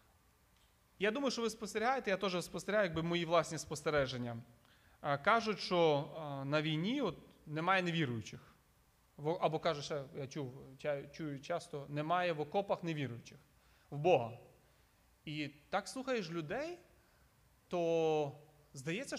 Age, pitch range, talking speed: 30-49, 145-200 Hz, 120 wpm